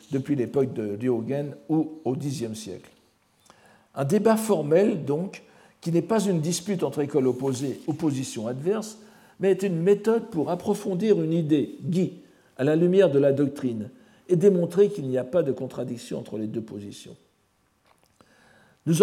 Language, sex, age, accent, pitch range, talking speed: French, male, 60-79, French, 130-200 Hz, 160 wpm